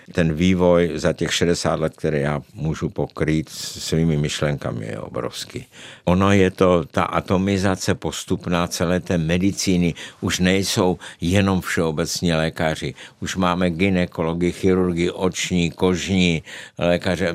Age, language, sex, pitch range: 60-79, Czech, male, 80-95 Hz